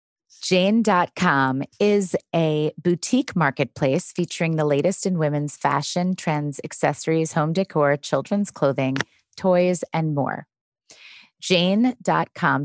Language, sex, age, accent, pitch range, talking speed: English, female, 30-49, American, 150-180 Hz, 100 wpm